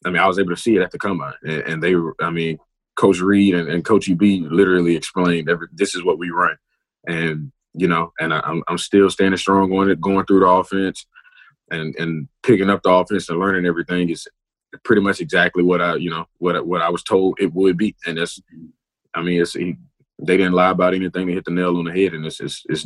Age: 20-39